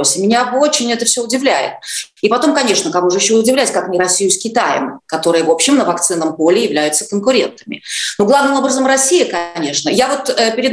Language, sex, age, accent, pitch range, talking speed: Russian, female, 30-49, native, 175-265 Hz, 185 wpm